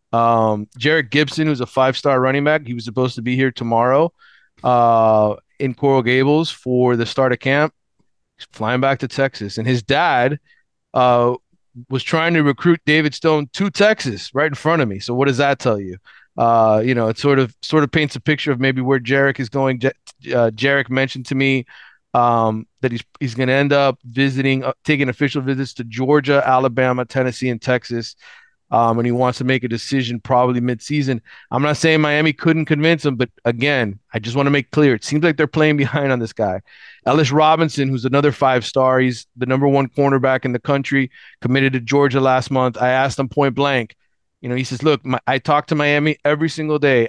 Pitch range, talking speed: 125-145 Hz, 205 wpm